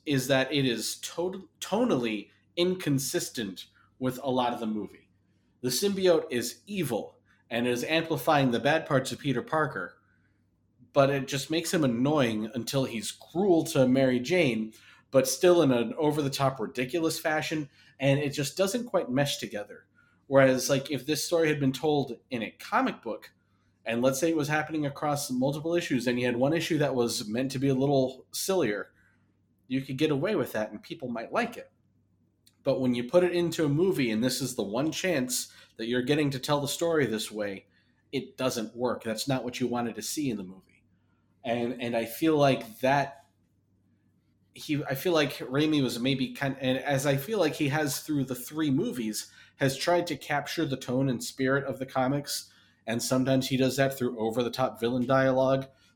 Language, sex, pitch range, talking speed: English, male, 120-150 Hz, 195 wpm